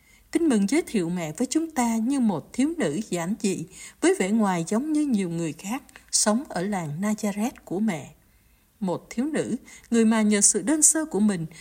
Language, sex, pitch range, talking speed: Vietnamese, female, 185-260 Hz, 200 wpm